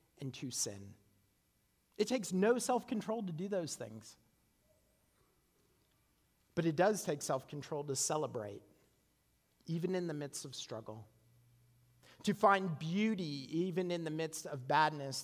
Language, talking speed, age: English, 130 wpm, 40-59